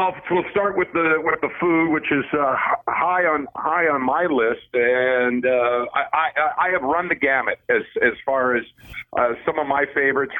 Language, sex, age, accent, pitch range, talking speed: English, male, 50-69, American, 125-155 Hz, 195 wpm